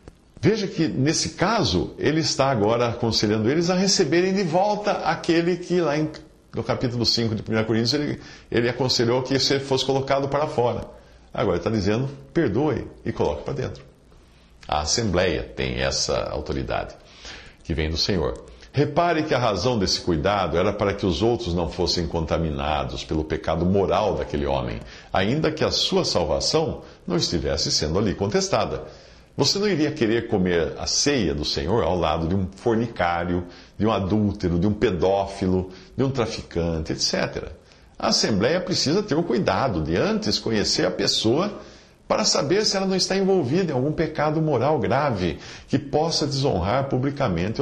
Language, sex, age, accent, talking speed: English, male, 50-69, Brazilian, 160 wpm